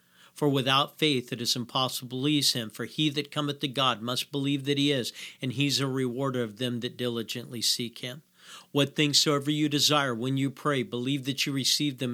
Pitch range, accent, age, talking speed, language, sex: 115-145 Hz, American, 50-69, 215 wpm, English, male